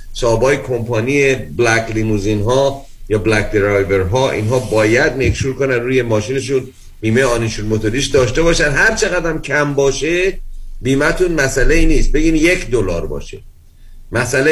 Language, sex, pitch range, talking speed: Persian, male, 110-145 Hz, 140 wpm